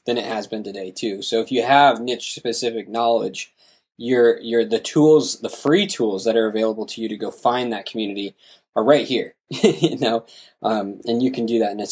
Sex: male